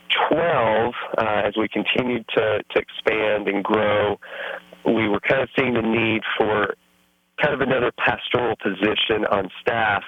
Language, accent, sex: English, American, male